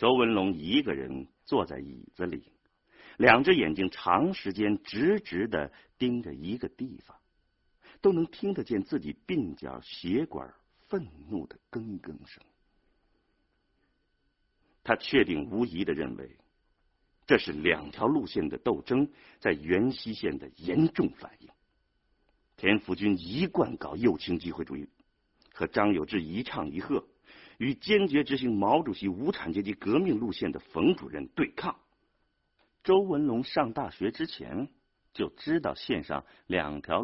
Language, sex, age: Chinese, male, 50-69